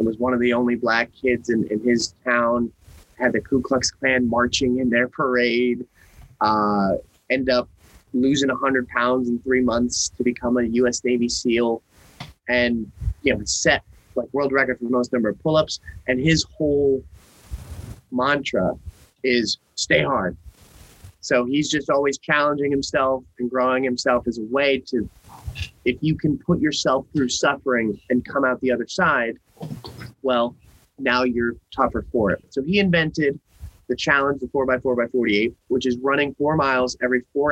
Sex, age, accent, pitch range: male, 30-49, American, 120-140 Hz